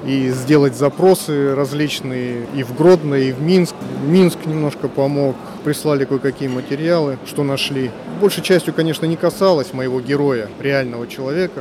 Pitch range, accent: 130-155 Hz, native